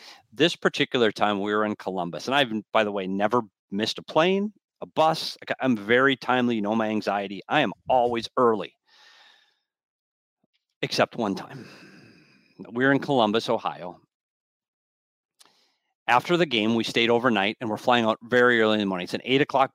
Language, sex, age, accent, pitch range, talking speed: English, male, 40-59, American, 105-135 Hz, 165 wpm